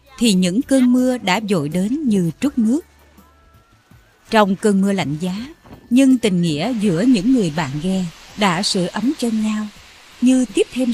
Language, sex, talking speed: Vietnamese, female, 170 wpm